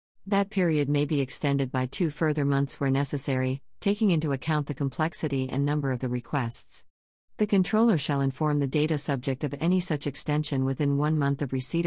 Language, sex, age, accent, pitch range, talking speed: English, female, 50-69, American, 130-155 Hz, 185 wpm